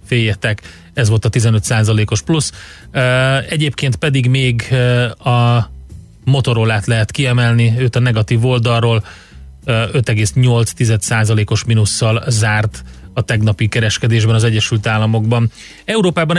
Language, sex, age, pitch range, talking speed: Hungarian, male, 30-49, 110-125 Hz, 100 wpm